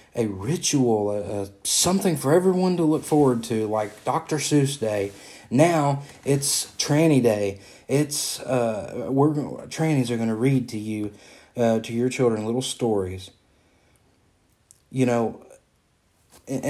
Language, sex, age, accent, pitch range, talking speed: English, male, 30-49, American, 110-140 Hz, 135 wpm